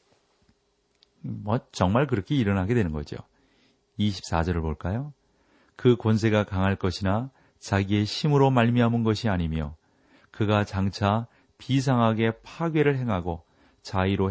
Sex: male